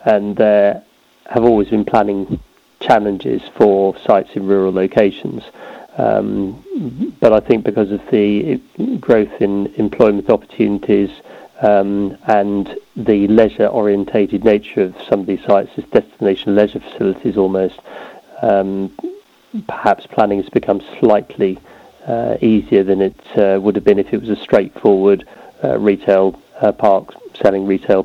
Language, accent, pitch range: English, British, 100-110 Hz